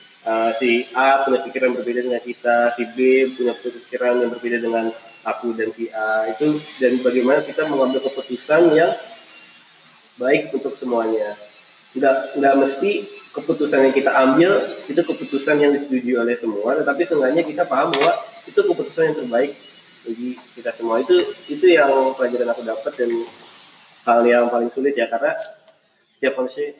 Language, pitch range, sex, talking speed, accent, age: Indonesian, 120-145 Hz, male, 150 wpm, native, 20-39